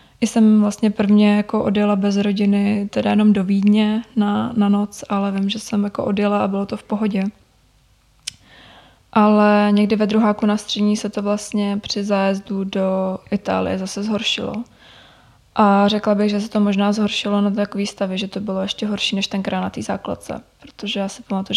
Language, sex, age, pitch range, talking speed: Czech, female, 20-39, 200-215 Hz, 185 wpm